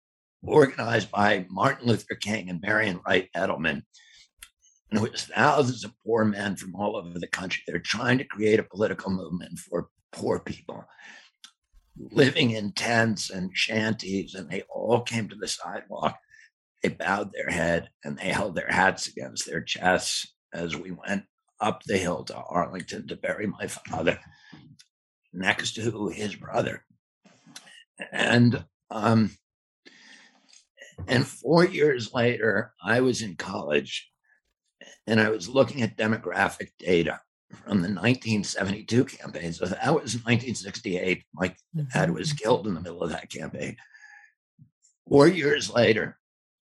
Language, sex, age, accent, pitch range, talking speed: English, male, 60-79, American, 105-135 Hz, 140 wpm